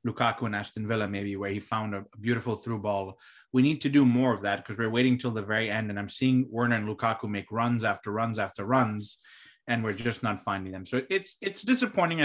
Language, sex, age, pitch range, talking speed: English, male, 30-49, 110-140 Hz, 235 wpm